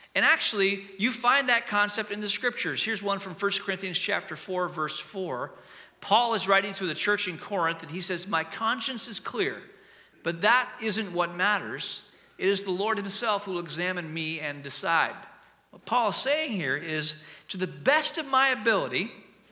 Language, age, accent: English, 40-59, American